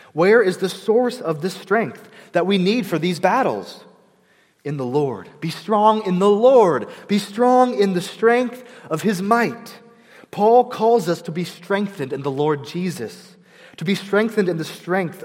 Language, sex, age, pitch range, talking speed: English, male, 30-49, 155-210 Hz, 175 wpm